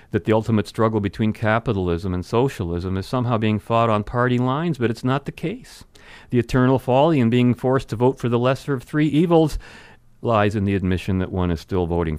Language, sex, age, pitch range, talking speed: English, male, 50-69, 100-135 Hz, 210 wpm